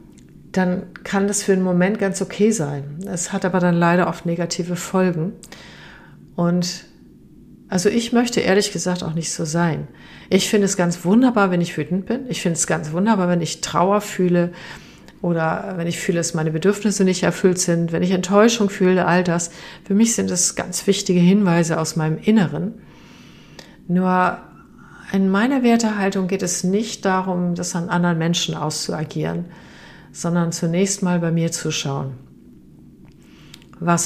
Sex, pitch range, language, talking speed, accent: female, 165-195 Hz, German, 160 wpm, German